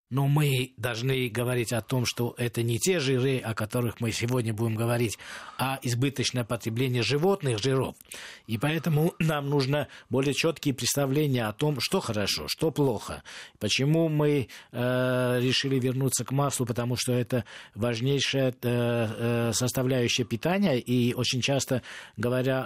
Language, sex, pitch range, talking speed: Russian, male, 115-140 Hz, 135 wpm